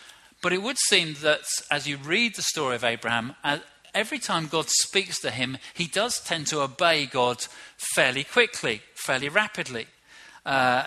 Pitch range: 125-155 Hz